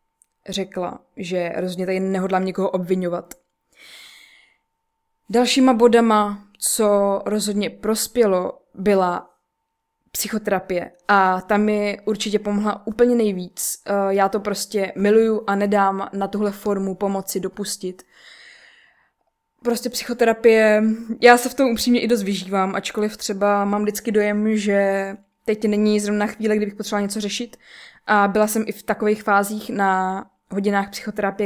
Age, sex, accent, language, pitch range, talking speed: 20-39, female, native, Czech, 195-220 Hz, 130 wpm